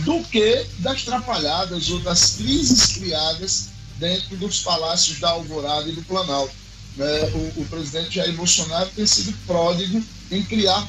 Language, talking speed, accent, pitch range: Portuguese, 140 wpm, Brazilian, 150-200 Hz